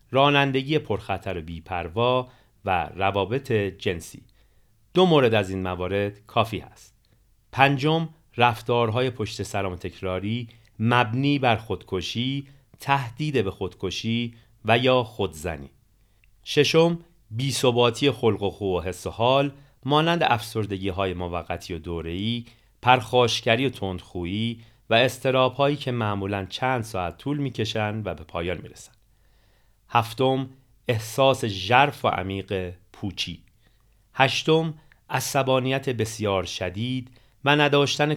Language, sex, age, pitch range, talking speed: Persian, male, 40-59, 100-130 Hz, 115 wpm